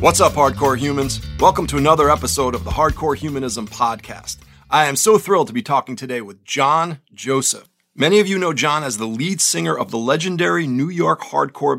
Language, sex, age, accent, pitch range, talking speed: English, male, 40-59, American, 120-170 Hz, 200 wpm